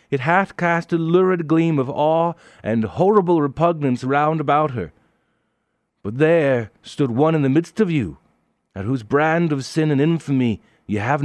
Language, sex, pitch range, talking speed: English, male, 100-155 Hz, 170 wpm